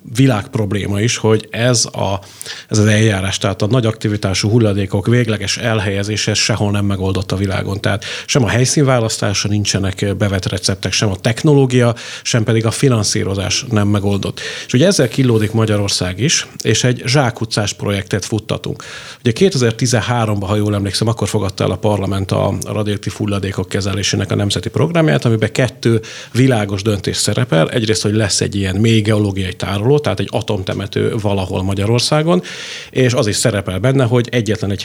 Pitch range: 100-120 Hz